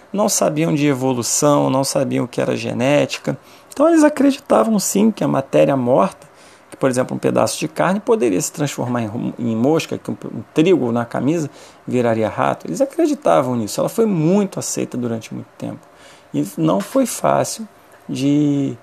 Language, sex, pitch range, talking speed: Portuguese, male, 130-220 Hz, 170 wpm